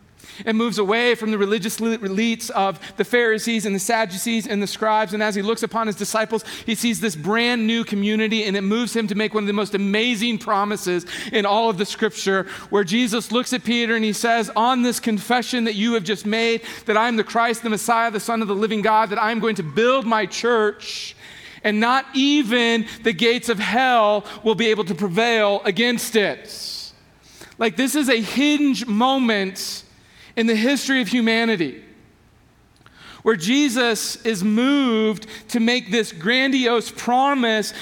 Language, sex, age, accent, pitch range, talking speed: English, male, 40-59, American, 215-245 Hz, 180 wpm